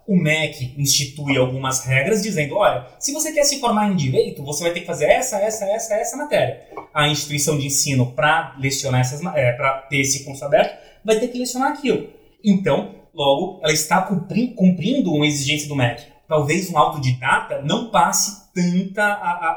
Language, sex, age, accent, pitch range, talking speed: Portuguese, male, 20-39, Brazilian, 145-220 Hz, 175 wpm